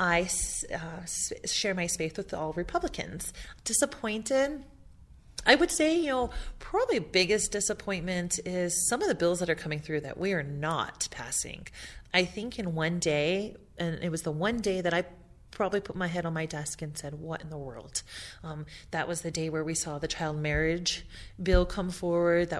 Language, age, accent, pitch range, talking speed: English, 30-49, American, 155-200 Hz, 190 wpm